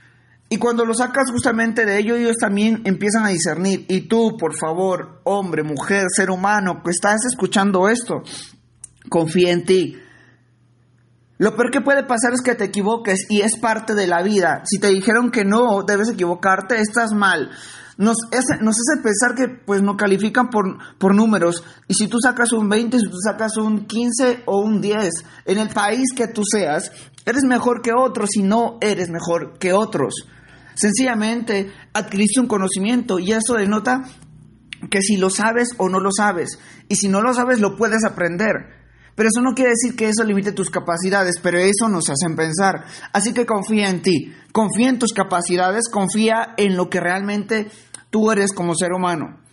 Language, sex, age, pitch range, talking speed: Spanish, male, 30-49, 180-225 Hz, 180 wpm